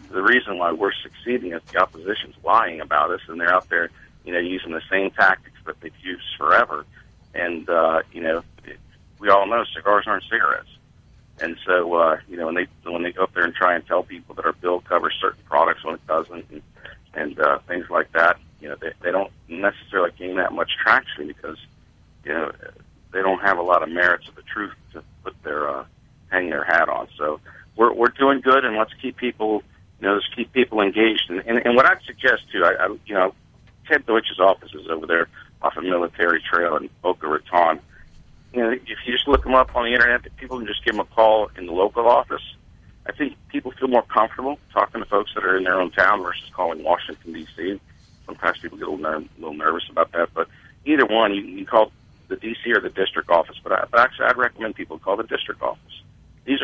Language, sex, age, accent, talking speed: English, male, 50-69, American, 225 wpm